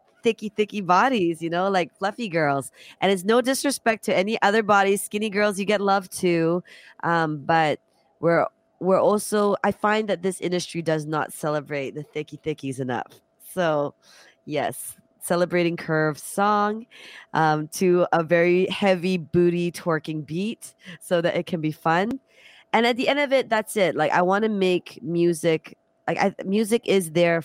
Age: 20-39